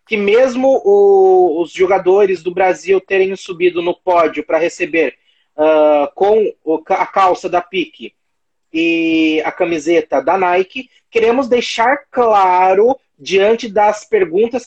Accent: Brazilian